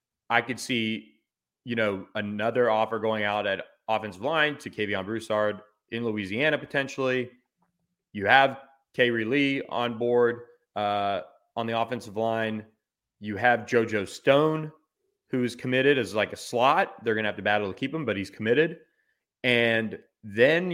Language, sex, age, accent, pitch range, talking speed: English, male, 30-49, American, 105-130 Hz, 160 wpm